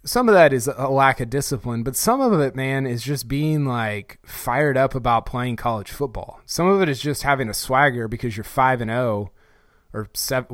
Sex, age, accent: male, 20-39, American